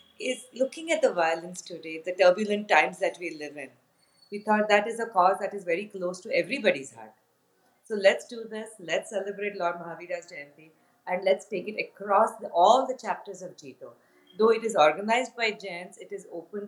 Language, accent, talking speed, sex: English, Indian, 200 wpm, female